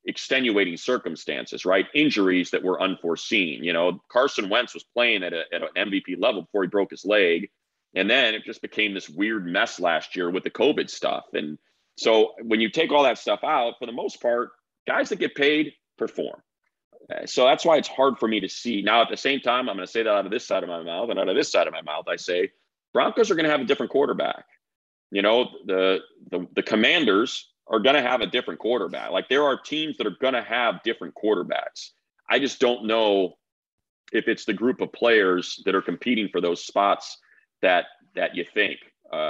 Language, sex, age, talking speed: English, male, 30-49, 220 wpm